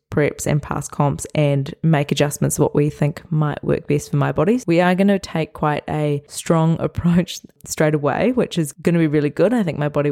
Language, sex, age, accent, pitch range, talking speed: English, female, 20-39, Australian, 145-170 Hz, 225 wpm